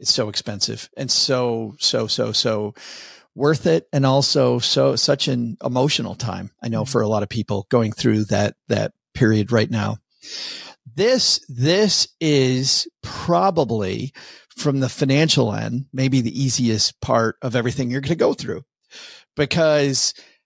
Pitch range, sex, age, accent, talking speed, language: 115-145 Hz, male, 40-59, American, 150 wpm, English